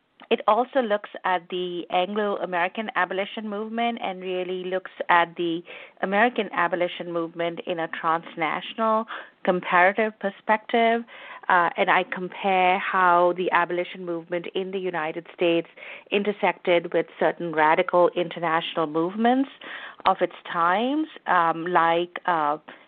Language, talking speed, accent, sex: English, 120 wpm, Indian, female